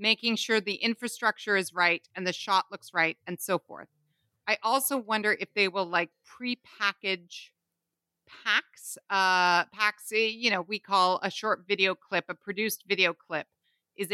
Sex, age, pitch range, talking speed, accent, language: female, 30-49, 175-210 Hz, 160 wpm, American, English